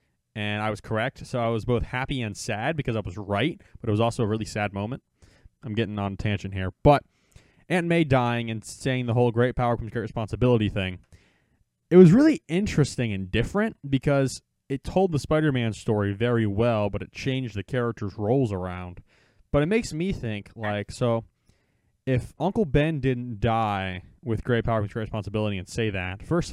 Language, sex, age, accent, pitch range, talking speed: English, male, 20-39, American, 105-130 Hz, 195 wpm